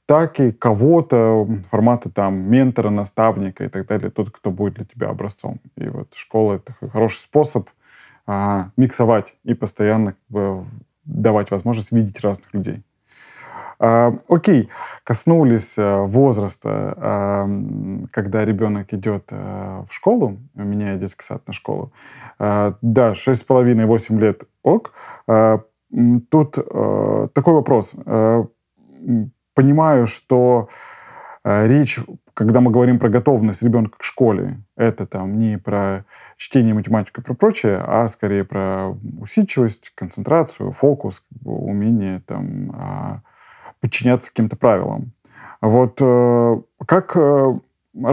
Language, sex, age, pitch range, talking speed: Russian, male, 20-39, 100-125 Hz, 115 wpm